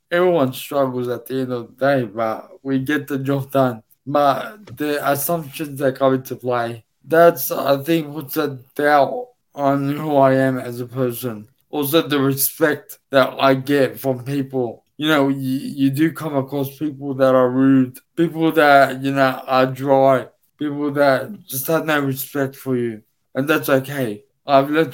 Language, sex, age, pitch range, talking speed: English, male, 20-39, 130-150 Hz, 175 wpm